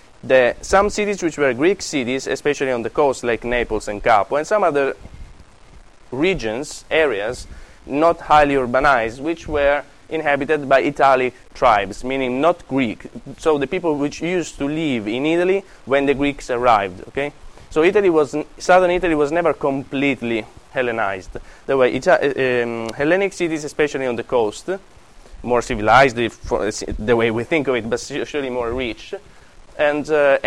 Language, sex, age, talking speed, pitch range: Dutch, male, 20-39, 160 wpm, 125-160 Hz